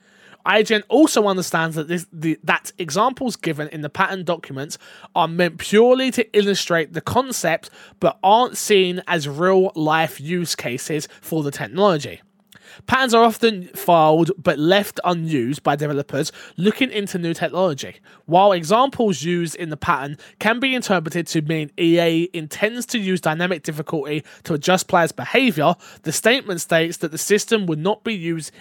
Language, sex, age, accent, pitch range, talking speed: English, male, 20-39, British, 165-210 Hz, 155 wpm